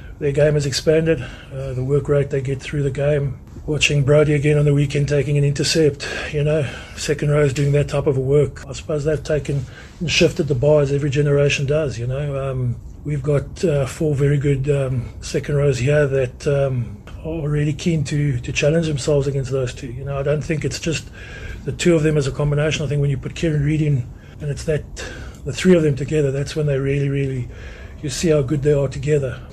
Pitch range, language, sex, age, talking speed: 140-155 Hz, English, male, 30-49, 225 wpm